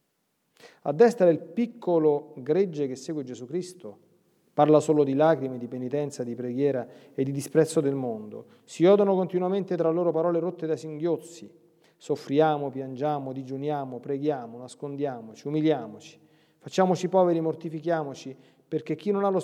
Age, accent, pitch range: 40-59, native, 135-170 Hz